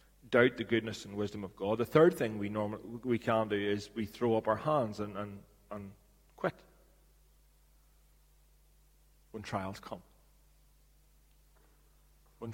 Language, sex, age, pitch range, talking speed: English, male, 30-49, 100-120 Hz, 140 wpm